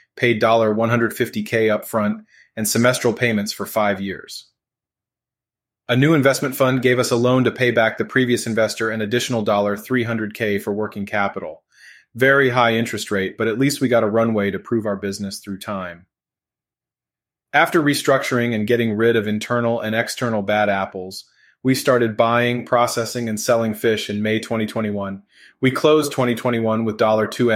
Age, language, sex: 30-49, English, male